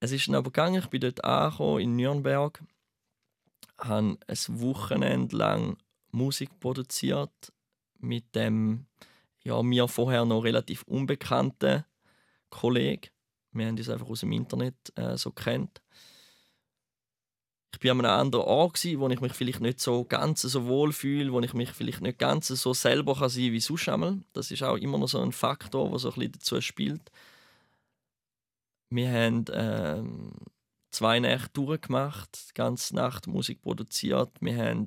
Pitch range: 110-135 Hz